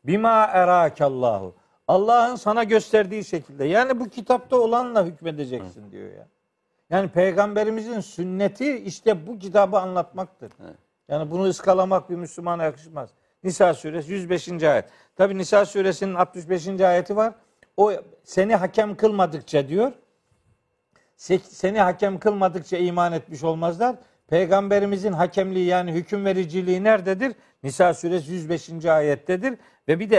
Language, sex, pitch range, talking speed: Turkish, male, 160-205 Hz, 115 wpm